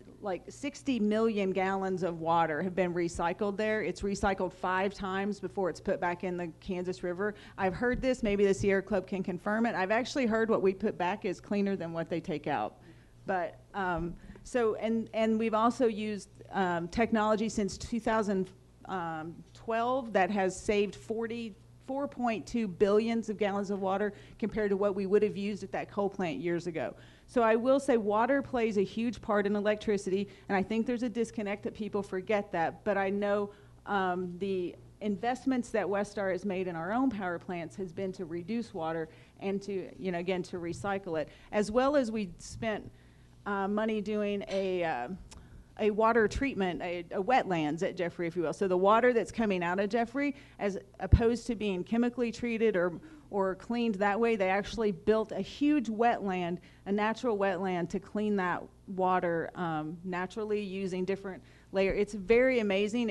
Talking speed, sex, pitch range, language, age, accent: 185 wpm, female, 185-220 Hz, English, 40-59, American